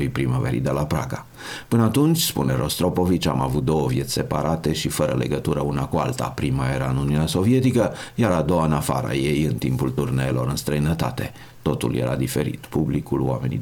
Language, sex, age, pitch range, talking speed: Romanian, male, 50-69, 70-85 Hz, 175 wpm